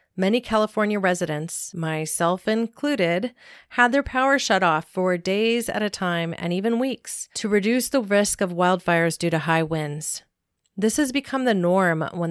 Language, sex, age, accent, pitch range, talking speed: English, female, 40-59, American, 170-210 Hz, 165 wpm